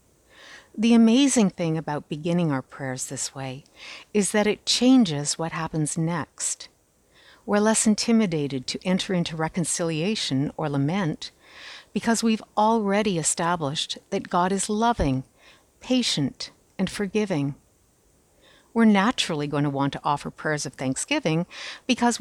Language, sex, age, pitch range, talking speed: English, female, 60-79, 150-215 Hz, 125 wpm